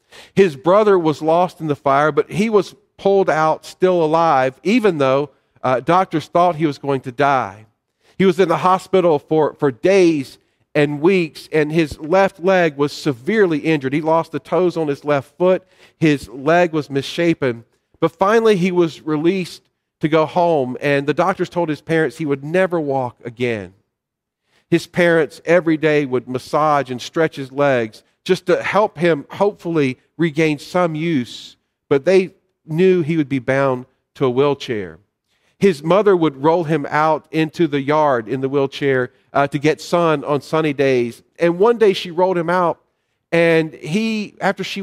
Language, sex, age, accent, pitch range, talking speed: English, male, 40-59, American, 140-180 Hz, 175 wpm